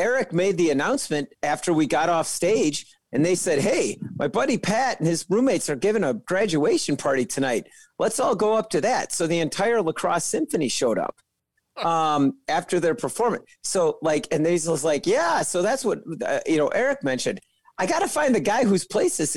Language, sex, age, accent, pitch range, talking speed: English, male, 40-59, American, 135-175 Hz, 205 wpm